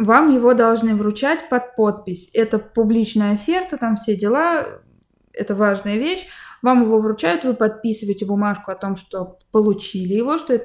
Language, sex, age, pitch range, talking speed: Russian, female, 20-39, 205-265 Hz, 160 wpm